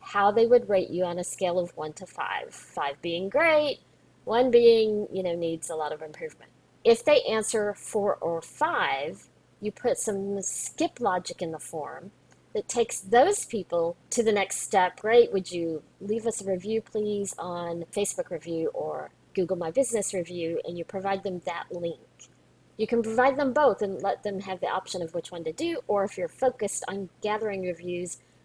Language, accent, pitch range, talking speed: English, American, 180-235 Hz, 190 wpm